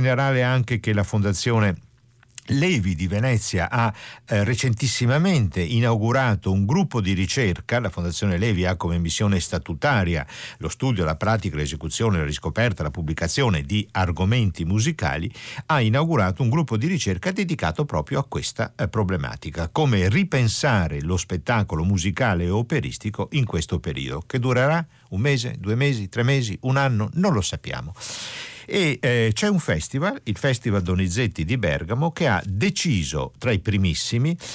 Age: 50-69